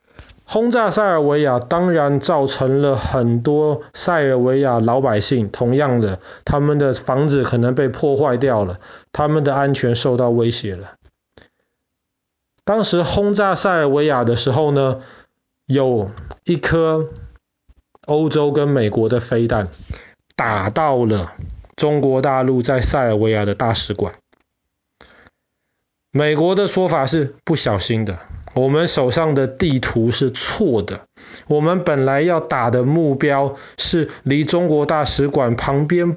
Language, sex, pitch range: Chinese, male, 120-155 Hz